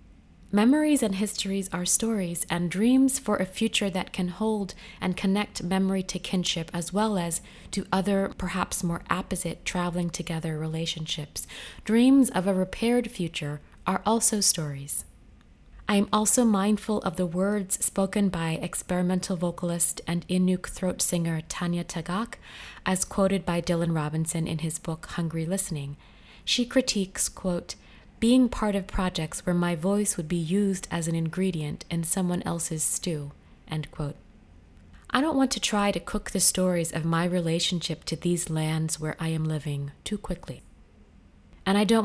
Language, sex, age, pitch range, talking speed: English, female, 20-39, 160-200 Hz, 155 wpm